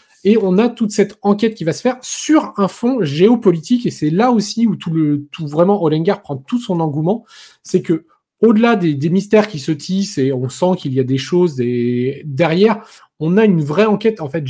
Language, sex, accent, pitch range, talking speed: French, male, French, 150-220 Hz, 225 wpm